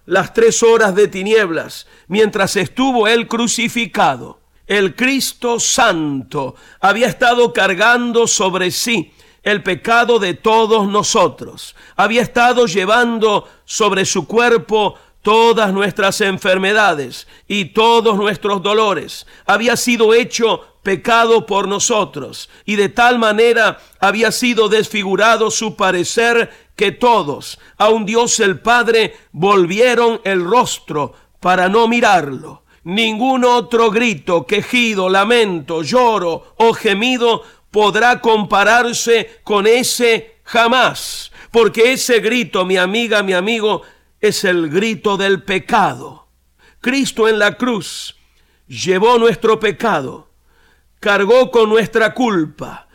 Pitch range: 200-235 Hz